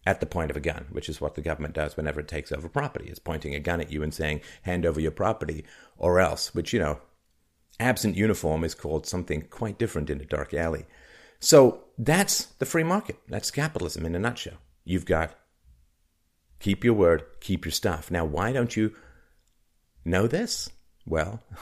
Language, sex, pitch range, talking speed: English, male, 75-95 Hz, 195 wpm